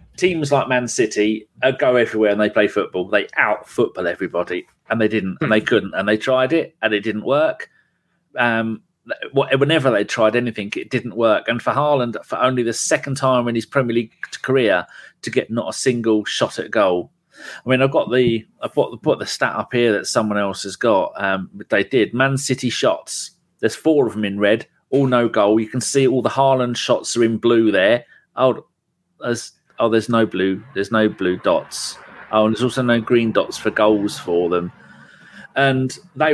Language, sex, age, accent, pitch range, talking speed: English, male, 30-49, British, 105-135 Hz, 205 wpm